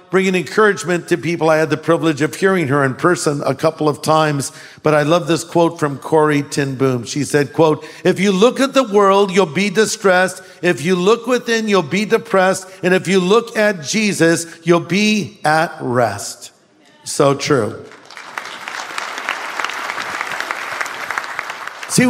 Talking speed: 155 wpm